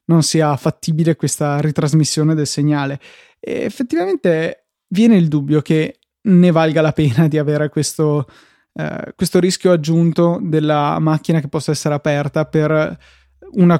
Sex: male